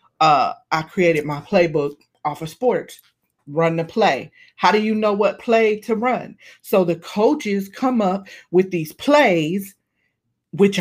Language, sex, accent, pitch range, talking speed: English, female, American, 175-235 Hz, 155 wpm